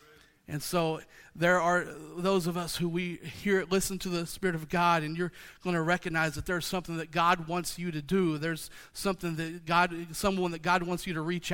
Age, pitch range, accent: 40-59, 175-225 Hz, American